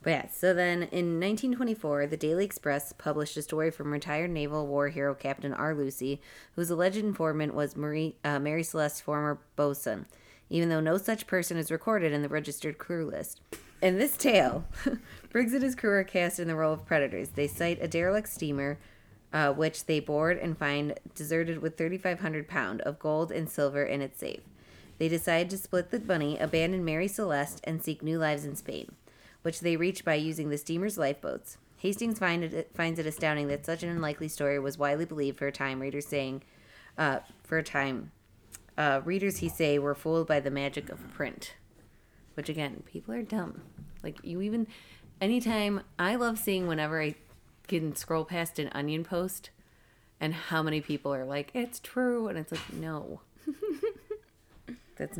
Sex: female